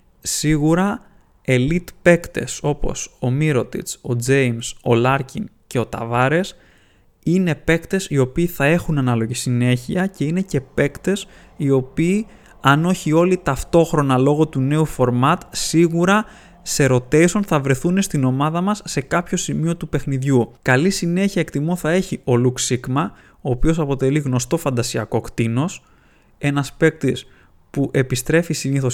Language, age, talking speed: Greek, 20-39, 135 wpm